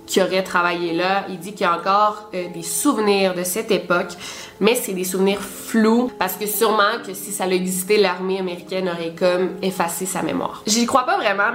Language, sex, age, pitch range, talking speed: French, female, 20-39, 185-220 Hz, 205 wpm